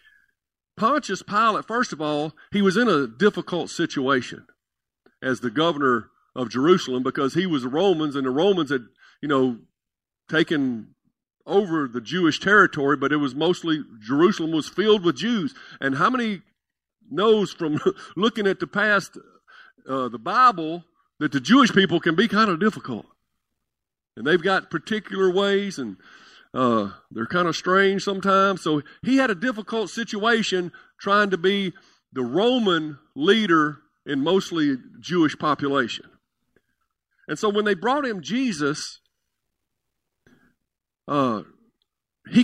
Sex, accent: male, American